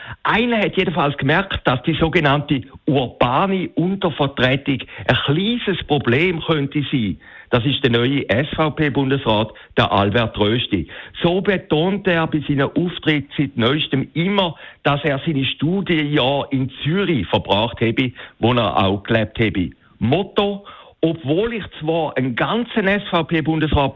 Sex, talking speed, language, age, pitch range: male, 130 wpm, German, 60-79, 120-170 Hz